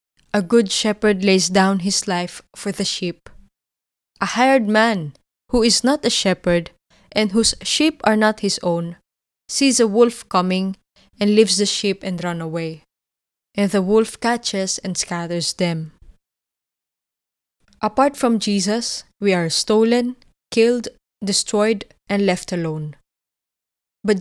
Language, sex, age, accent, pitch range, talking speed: English, female, 20-39, Filipino, 175-220 Hz, 135 wpm